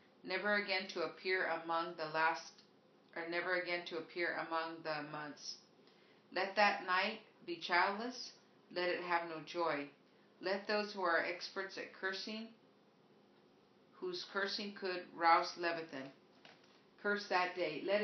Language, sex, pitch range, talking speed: English, female, 165-200 Hz, 135 wpm